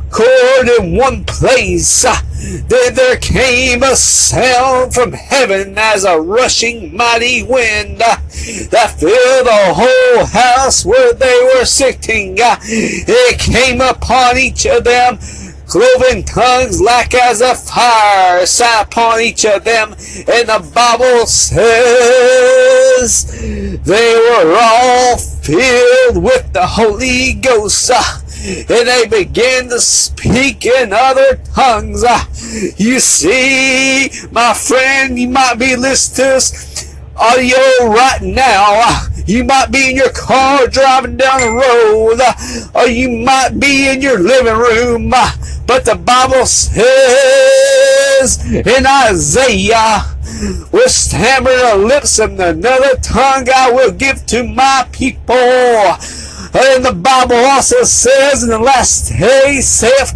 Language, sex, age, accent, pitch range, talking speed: English, male, 40-59, American, 240-280 Hz, 120 wpm